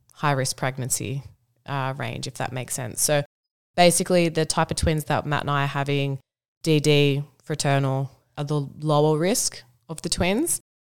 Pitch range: 130-150 Hz